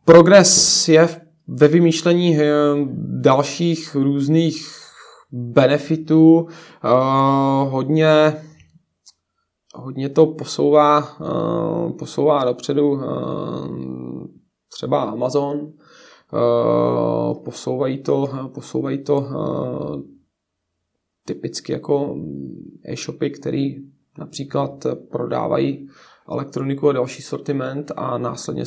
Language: Czech